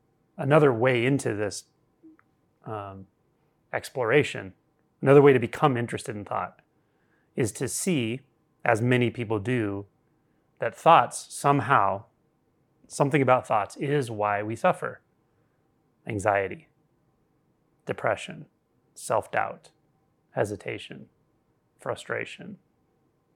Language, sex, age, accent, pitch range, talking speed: English, male, 30-49, American, 115-145 Hz, 90 wpm